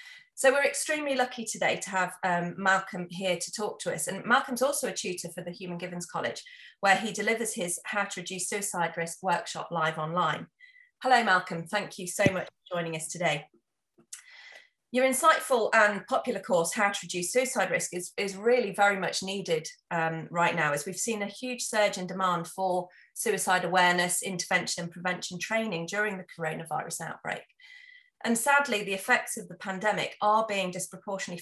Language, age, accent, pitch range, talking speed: English, 30-49, British, 175-235 Hz, 180 wpm